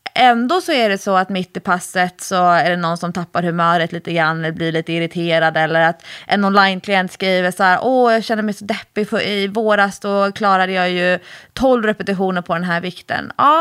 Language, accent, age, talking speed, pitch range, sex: English, Swedish, 20-39, 210 wpm, 190-270 Hz, female